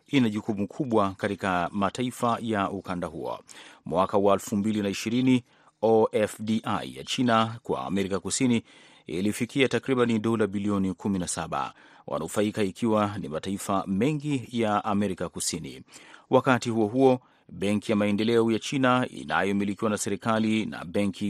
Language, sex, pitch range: Swahili, male, 100-115 Hz